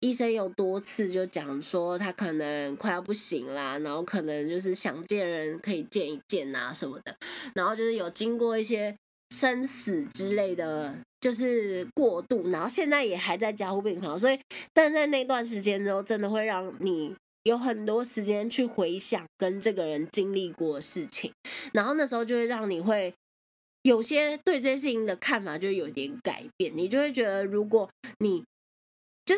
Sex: female